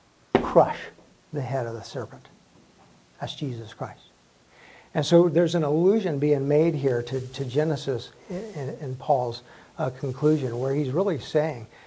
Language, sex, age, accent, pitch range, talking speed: English, male, 60-79, American, 125-160 Hz, 150 wpm